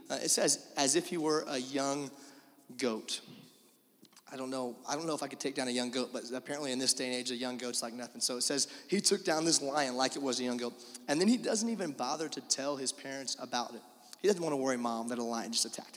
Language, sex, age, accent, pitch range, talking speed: English, male, 30-49, American, 135-190 Hz, 275 wpm